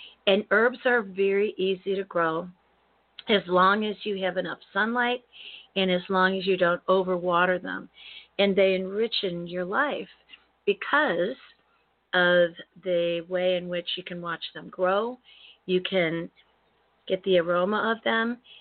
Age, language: 40-59, English